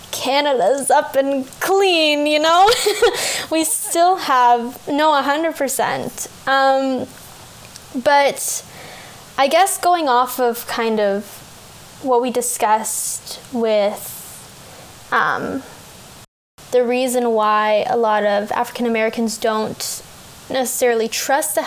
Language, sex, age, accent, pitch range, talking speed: English, female, 10-29, American, 225-265 Hz, 100 wpm